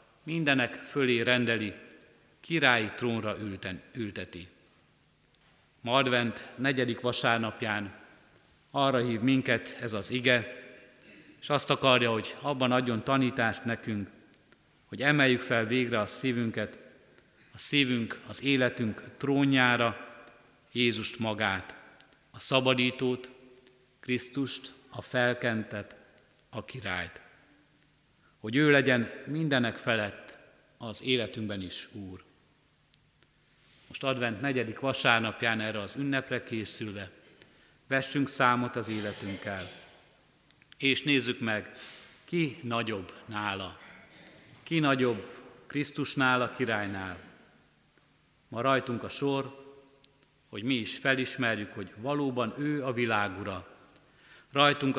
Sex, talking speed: male, 95 wpm